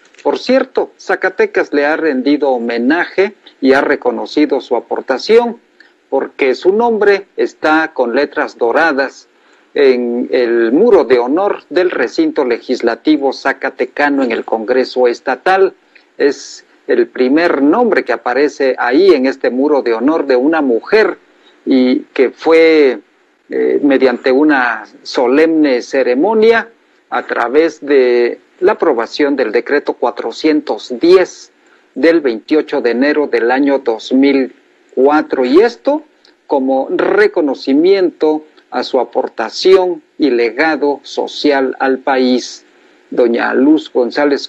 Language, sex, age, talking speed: Spanish, male, 50-69, 115 wpm